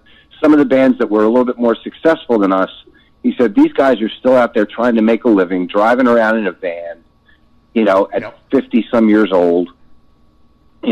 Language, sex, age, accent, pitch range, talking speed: English, male, 50-69, American, 95-120 Hz, 215 wpm